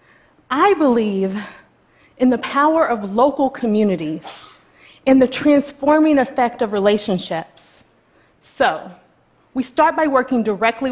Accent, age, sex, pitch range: American, 30-49, female, 200-265 Hz